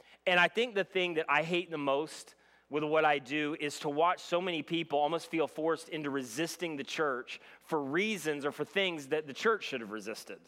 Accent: American